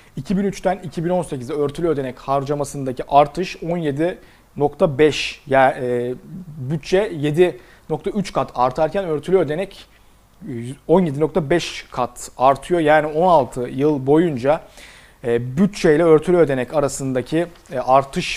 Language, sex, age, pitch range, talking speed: Turkish, male, 40-59, 125-165 Hz, 85 wpm